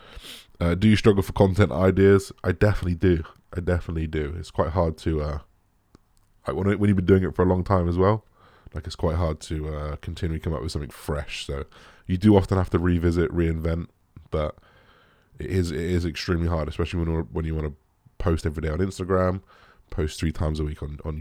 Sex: male